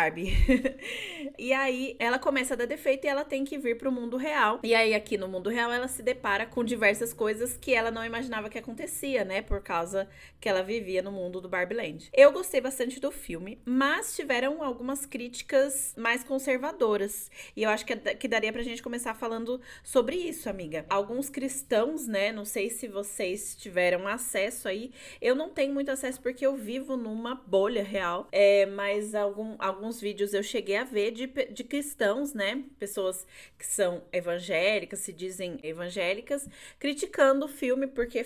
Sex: female